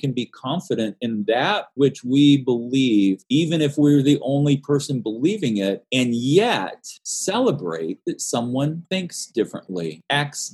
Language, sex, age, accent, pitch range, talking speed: English, male, 30-49, American, 110-150 Hz, 135 wpm